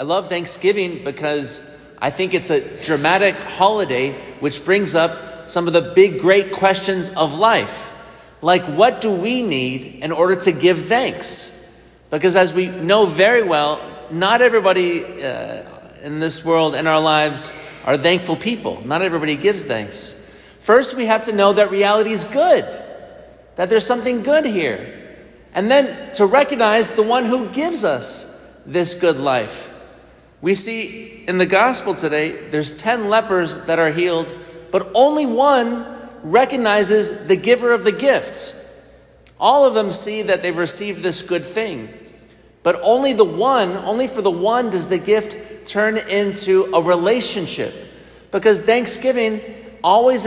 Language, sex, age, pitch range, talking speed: English, male, 40-59, 165-220 Hz, 155 wpm